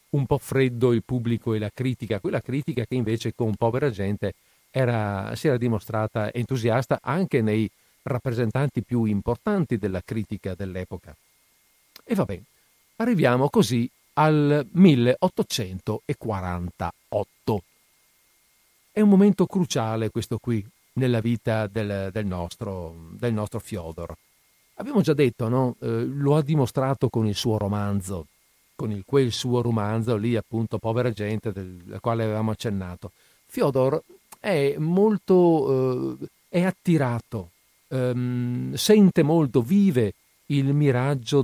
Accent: native